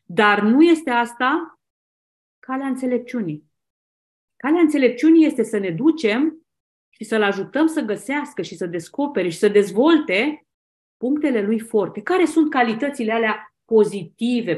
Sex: female